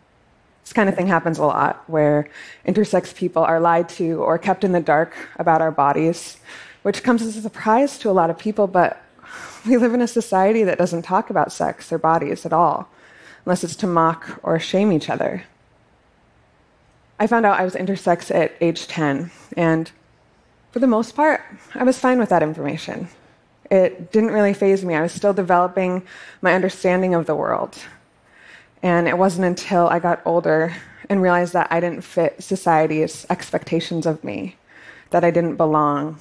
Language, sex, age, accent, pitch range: Korean, female, 20-39, American, 165-195 Hz